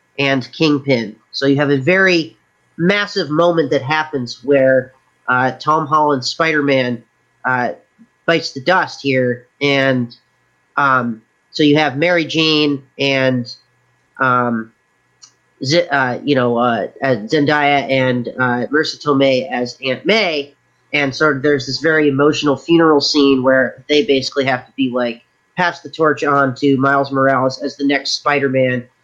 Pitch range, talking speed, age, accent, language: 130-160 Hz, 145 wpm, 30-49, American, English